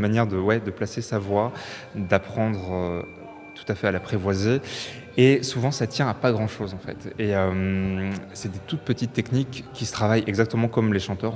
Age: 20-39